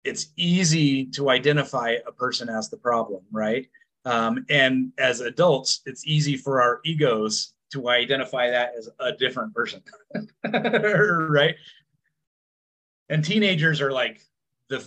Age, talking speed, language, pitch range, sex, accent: 30-49, 130 wpm, English, 120-160 Hz, male, American